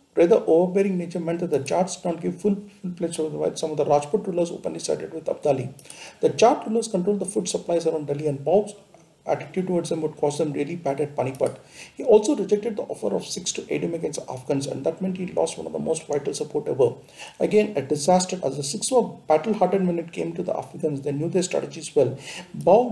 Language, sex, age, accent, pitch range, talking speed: English, male, 50-69, Indian, 155-200 Hz, 240 wpm